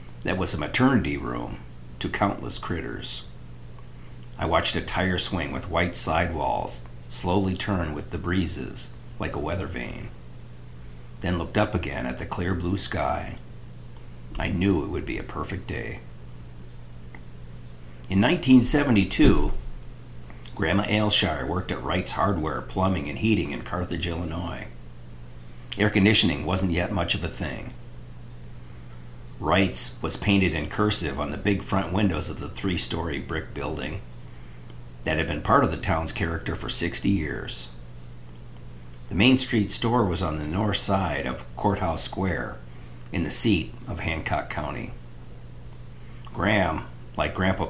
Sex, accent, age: male, American, 50-69